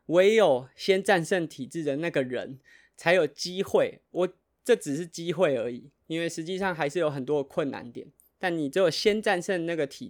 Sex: male